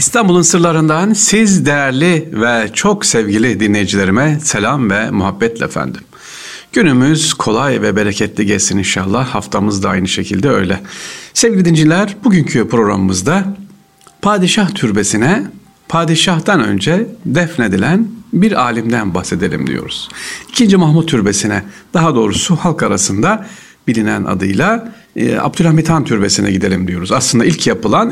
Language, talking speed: Turkish, 115 wpm